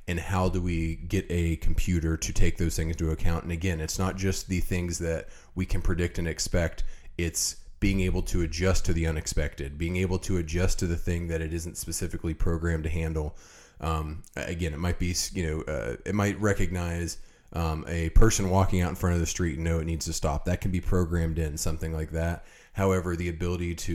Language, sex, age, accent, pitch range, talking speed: English, male, 30-49, American, 80-90 Hz, 220 wpm